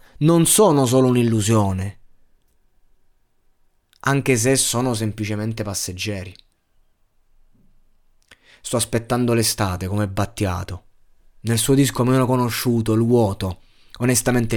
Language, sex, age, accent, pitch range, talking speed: Italian, male, 20-39, native, 110-140 Hz, 90 wpm